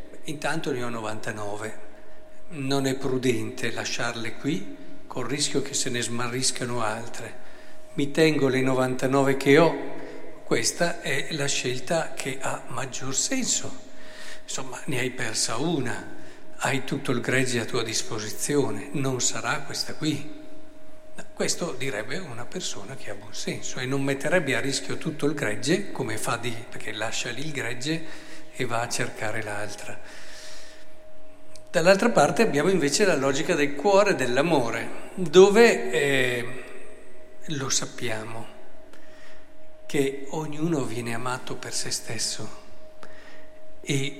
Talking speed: 130 wpm